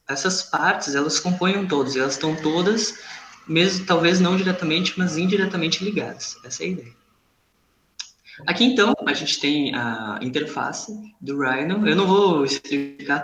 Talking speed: 145 wpm